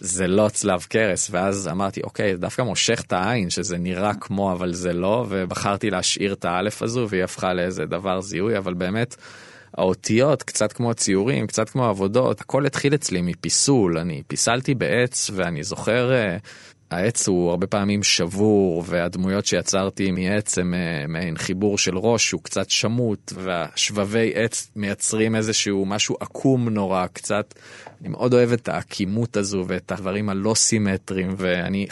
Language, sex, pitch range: Hebrew, male, 95-115 Hz